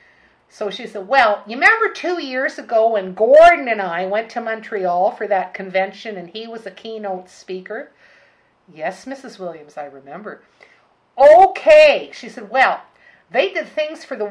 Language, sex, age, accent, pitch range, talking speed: English, female, 50-69, American, 195-270 Hz, 165 wpm